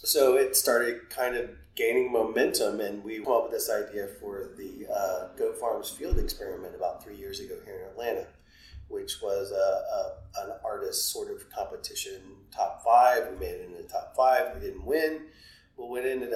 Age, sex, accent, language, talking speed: 30-49, male, American, English, 190 wpm